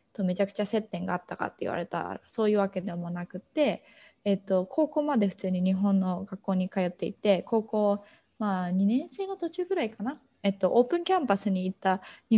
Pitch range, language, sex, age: 185-230 Hz, Japanese, female, 20-39